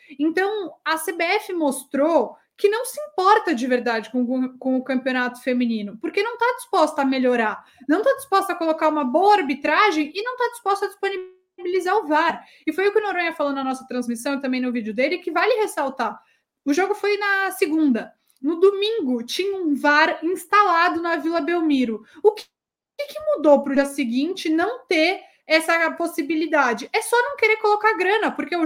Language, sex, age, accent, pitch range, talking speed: Portuguese, female, 20-39, Brazilian, 275-370 Hz, 185 wpm